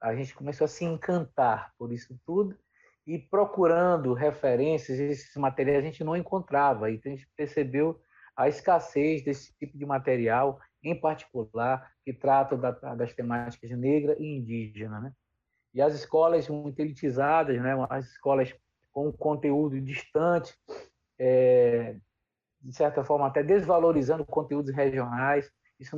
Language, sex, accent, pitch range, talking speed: Portuguese, male, Brazilian, 130-155 Hz, 135 wpm